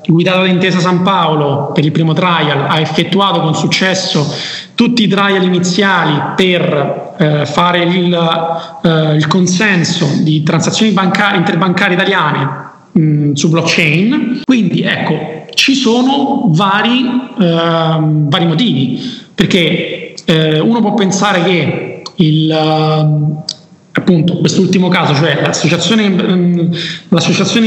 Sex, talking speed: male, 105 wpm